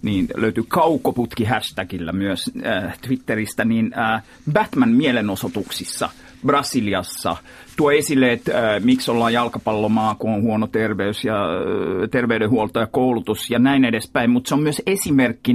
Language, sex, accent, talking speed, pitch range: Finnish, male, native, 135 wpm, 110-135 Hz